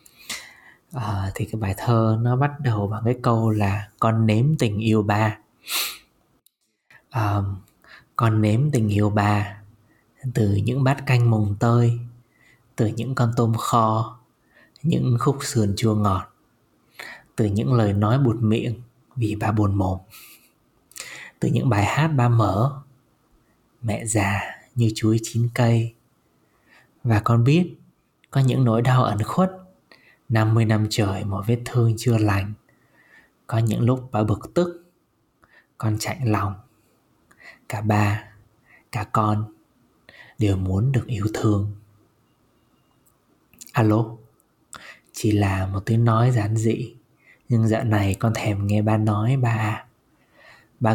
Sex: male